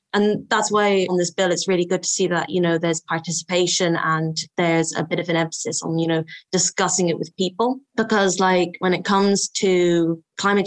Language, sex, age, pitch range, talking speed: English, female, 20-39, 170-195 Hz, 210 wpm